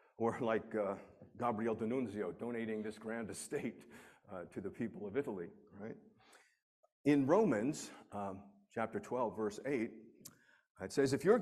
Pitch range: 110-155 Hz